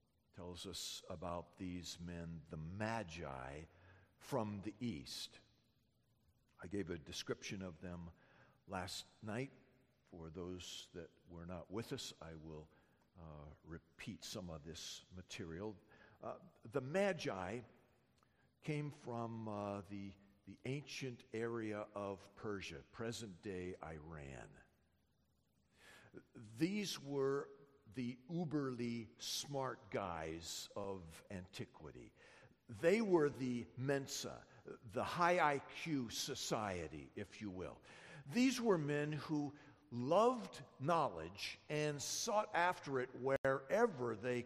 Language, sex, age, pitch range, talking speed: English, male, 50-69, 90-140 Hz, 105 wpm